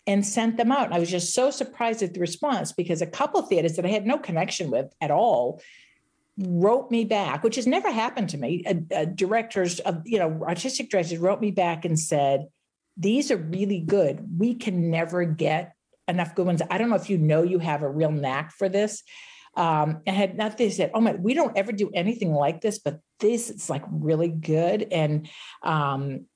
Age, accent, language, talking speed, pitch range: 50-69, American, English, 220 wpm, 160-220 Hz